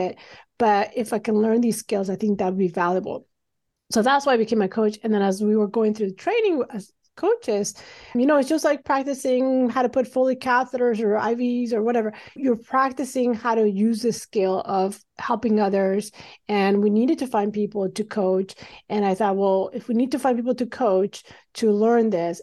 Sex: female